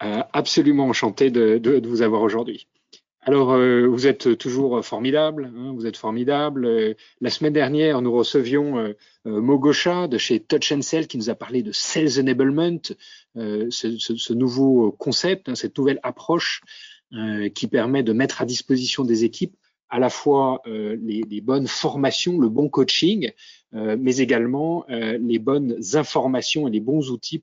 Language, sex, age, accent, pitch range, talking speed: French, male, 30-49, French, 115-145 Hz, 160 wpm